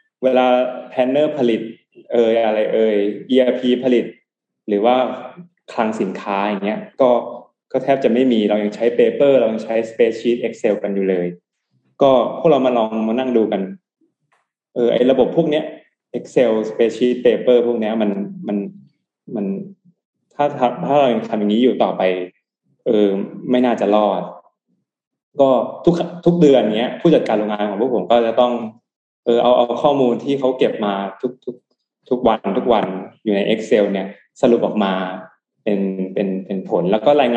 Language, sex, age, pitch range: Thai, male, 20-39, 105-130 Hz